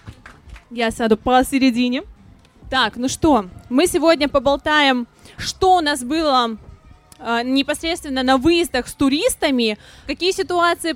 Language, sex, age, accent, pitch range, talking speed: Russian, female, 20-39, native, 265-335 Hz, 110 wpm